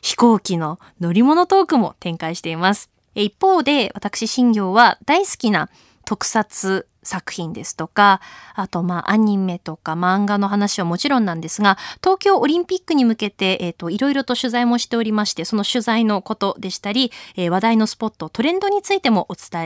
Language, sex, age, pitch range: Japanese, female, 20-39, 185-300 Hz